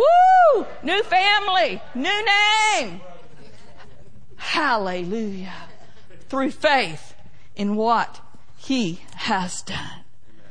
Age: 50-69